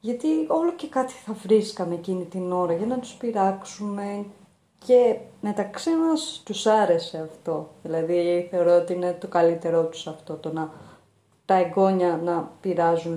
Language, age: Greek, 30-49